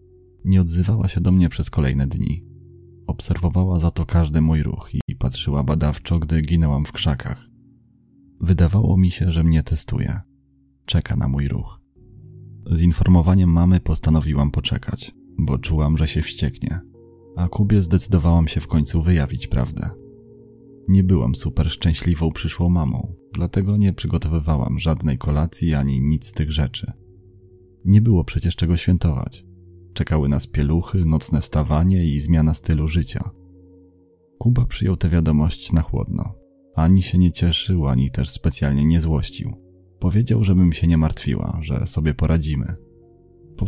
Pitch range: 80-95 Hz